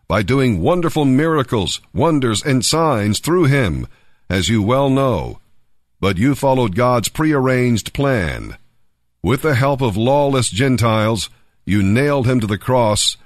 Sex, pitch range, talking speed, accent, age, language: male, 105-140 Hz, 140 wpm, American, 50-69, English